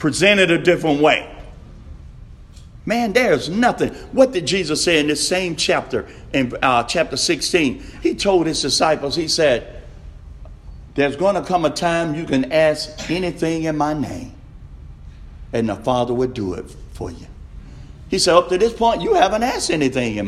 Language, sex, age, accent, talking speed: English, male, 50-69, American, 170 wpm